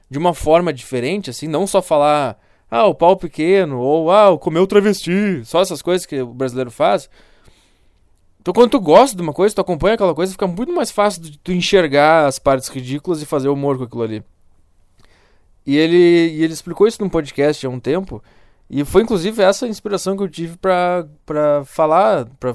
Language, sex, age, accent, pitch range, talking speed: Portuguese, male, 20-39, Brazilian, 130-185 Hz, 200 wpm